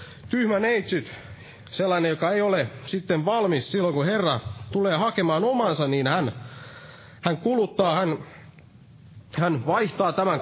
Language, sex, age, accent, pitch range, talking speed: Finnish, male, 30-49, native, 135-180 Hz, 125 wpm